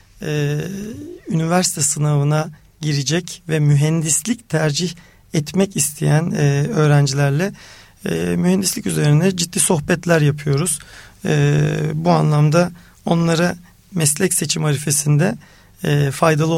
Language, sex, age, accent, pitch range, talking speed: Turkish, male, 40-59, native, 145-175 Hz, 95 wpm